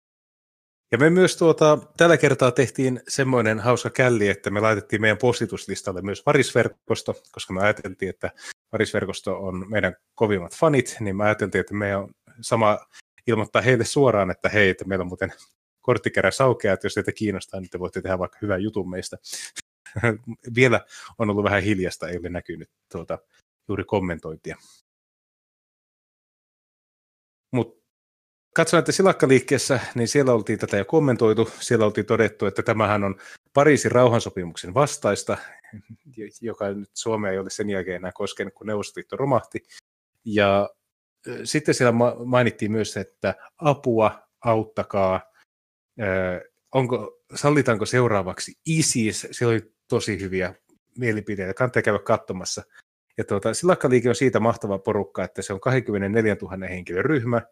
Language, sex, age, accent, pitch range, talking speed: Finnish, male, 30-49, native, 100-125 Hz, 135 wpm